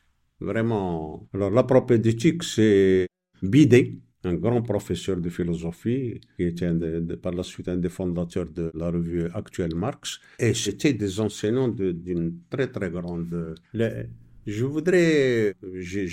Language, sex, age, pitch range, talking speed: English, male, 50-69, 95-130 Hz, 135 wpm